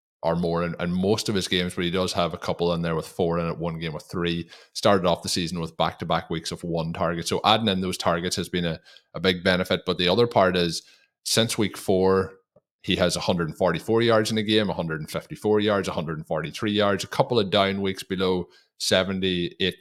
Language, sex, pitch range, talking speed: English, male, 85-95 Hz, 210 wpm